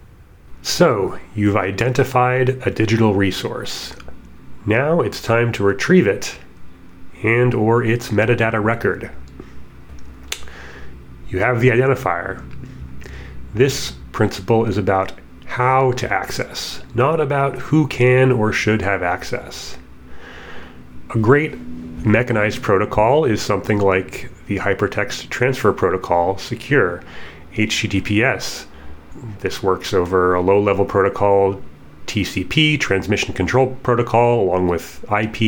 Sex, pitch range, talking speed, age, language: male, 90-115 Hz, 105 wpm, 30-49, English